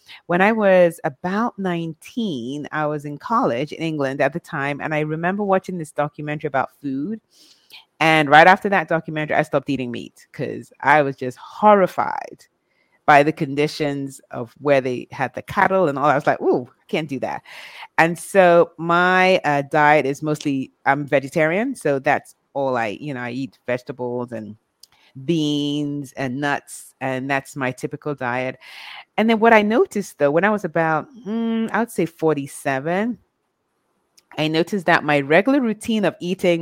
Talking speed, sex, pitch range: 170 wpm, female, 140-185 Hz